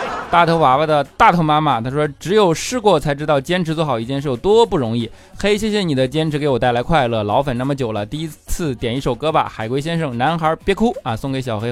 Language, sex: Chinese, male